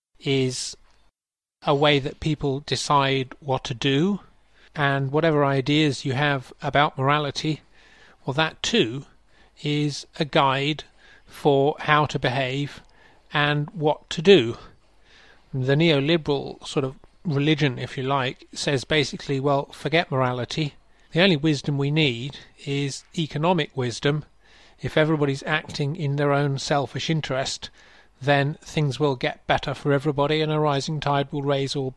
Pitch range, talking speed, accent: 135-155 Hz, 135 wpm, British